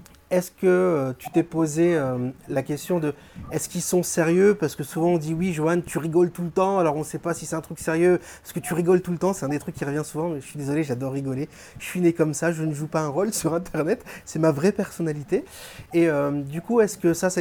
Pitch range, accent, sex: 145-175 Hz, French, male